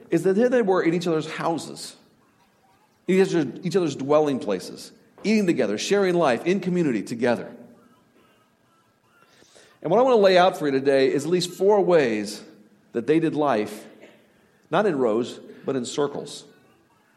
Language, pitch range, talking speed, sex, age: English, 155-205 Hz, 165 wpm, male, 50-69